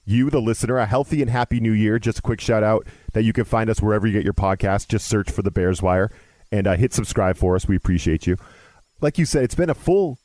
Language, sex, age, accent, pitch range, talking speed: English, male, 40-59, American, 105-135 Hz, 270 wpm